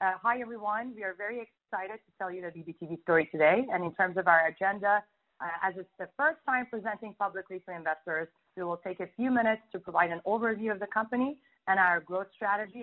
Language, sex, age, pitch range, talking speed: English, female, 30-49, 185-230 Hz, 220 wpm